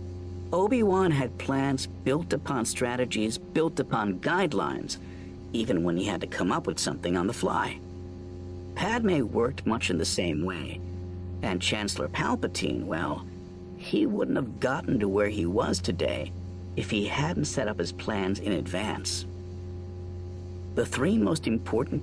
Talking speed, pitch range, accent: 145 wpm, 90-120 Hz, American